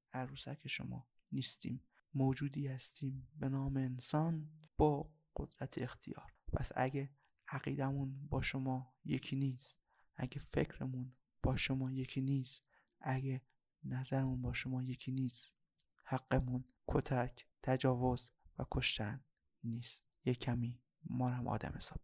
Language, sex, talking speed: Persian, male, 115 wpm